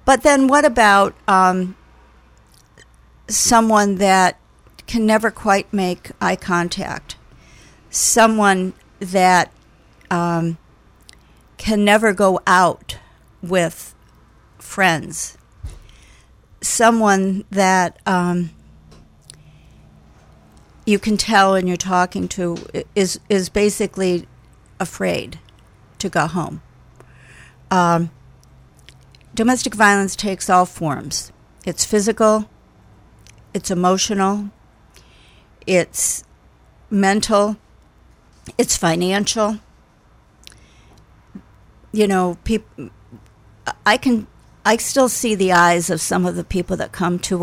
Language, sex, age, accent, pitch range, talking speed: English, female, 50-69, American, 170-205 Hz, 90 wpm